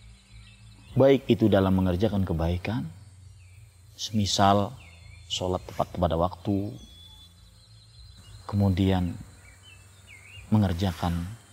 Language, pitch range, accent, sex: Indonesian, 95-120 Hz, native, male